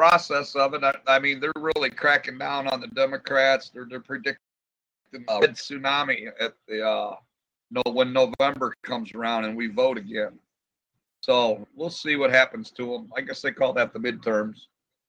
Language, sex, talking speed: English, male, 175 wpm